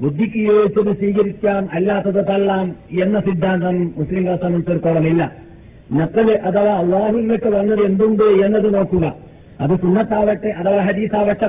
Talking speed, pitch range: 110 wpm, 155-215 Hz